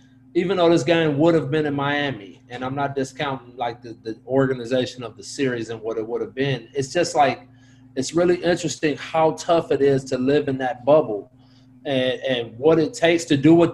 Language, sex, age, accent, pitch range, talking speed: English, male, 30-49, American, 130-165 Hz, 215 wpm